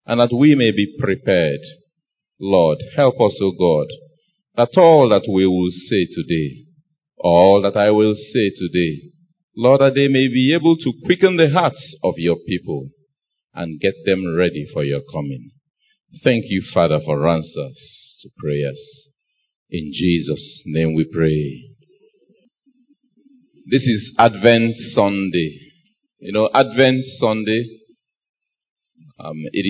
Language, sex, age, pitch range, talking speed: English, male, 50-69, 95-145 Hz, 135 wpm